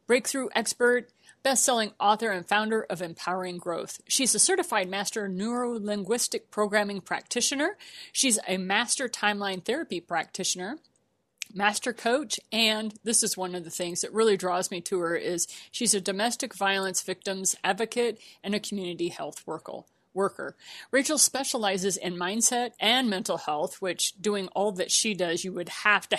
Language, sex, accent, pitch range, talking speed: English, female, American, 185-240 Hz, 155 wpm